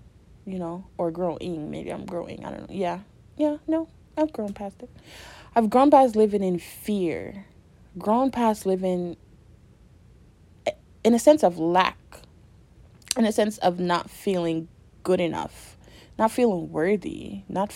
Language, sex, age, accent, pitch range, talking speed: English, female, 30-49, American, 160-200 Hz, 145 wpm